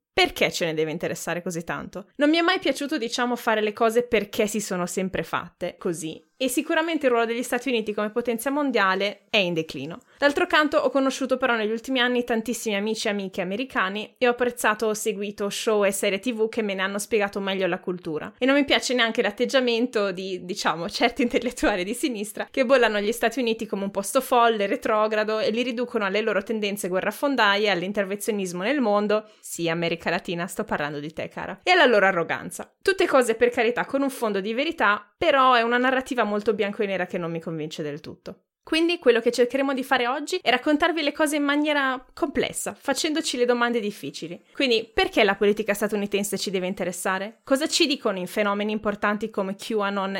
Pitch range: 195-255 Hz